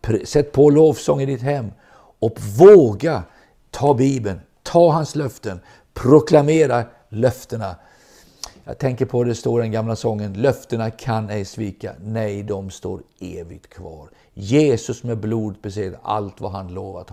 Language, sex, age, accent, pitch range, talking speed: Swedish, male, 50-69, native, 95-125 Hz, 145 wpm